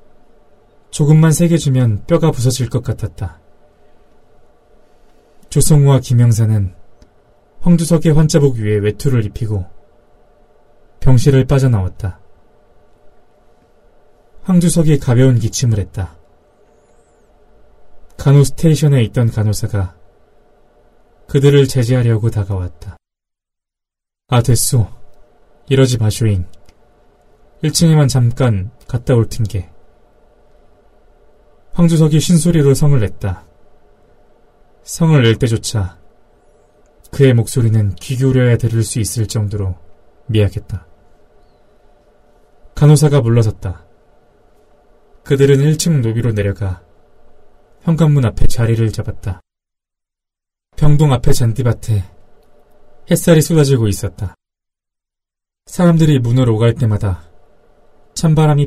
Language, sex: Korean, male